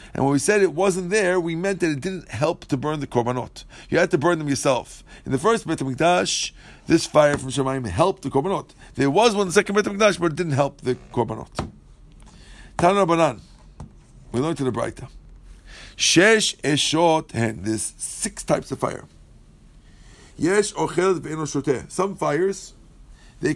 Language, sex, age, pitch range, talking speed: English, male, 50-69, 135-180 Hz, 175 wpm